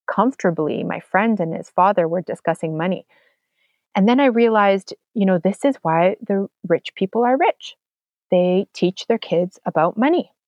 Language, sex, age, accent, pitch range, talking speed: English, female, 30-49, American, 175-230 Hz, 165 wpm